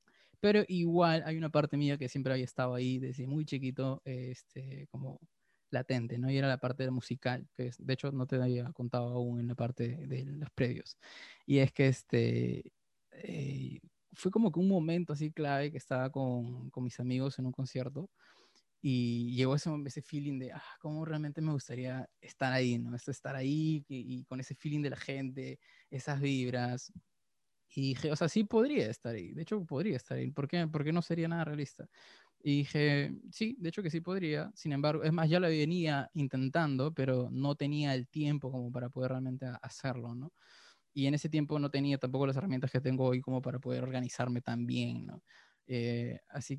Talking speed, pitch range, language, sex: 200 wpm, 125-150 Hz, Spanish, male